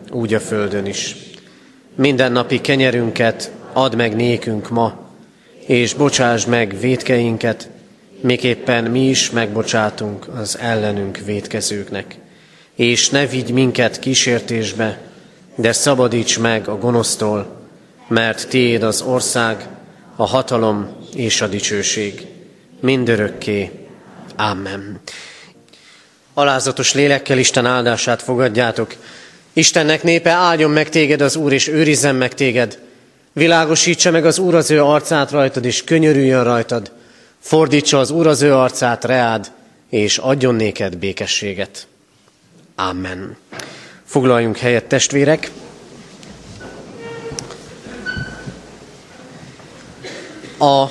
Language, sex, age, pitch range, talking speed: Hungarian, male, 30-49, 110-140 Hz, 100 wpm